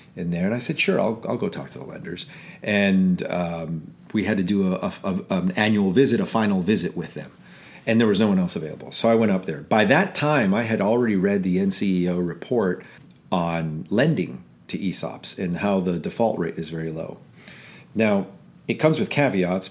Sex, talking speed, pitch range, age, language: male, 210 wpm, 90-120 Hz, 40-59, English